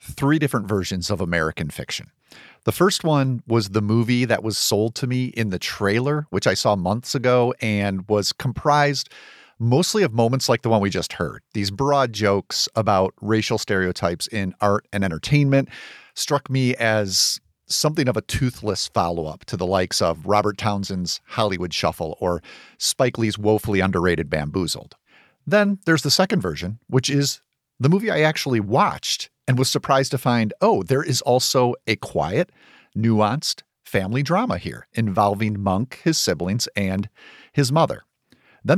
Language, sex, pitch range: English, male, 100-135 Hz